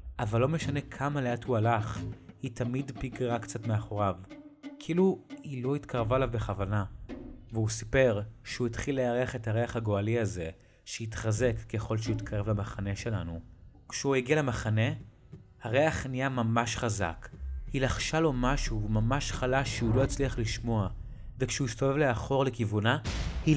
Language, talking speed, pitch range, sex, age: Hebrew, 135 wpm, 110-135 Hz, male, 30-49